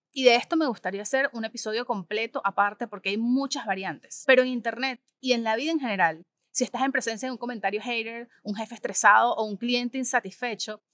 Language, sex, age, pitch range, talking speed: Spanish, female, 30-49, 210-265 Hz, 210 wpm